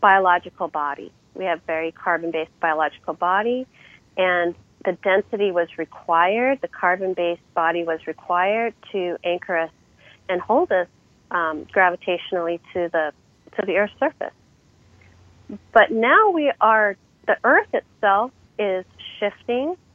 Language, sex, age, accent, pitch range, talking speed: English, female, 30-49, American, 175-220 Hz, 125 wpm